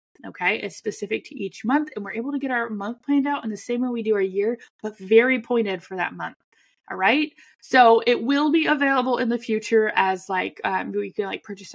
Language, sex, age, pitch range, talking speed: English, female, 10-29, 195-235 Hz, 235 wpm